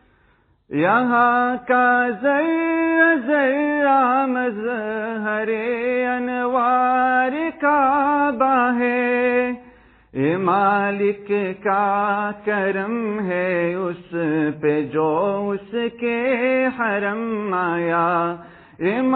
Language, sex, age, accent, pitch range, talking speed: English, male, 40-59, Indian, 195-255 Hz, 35 wpm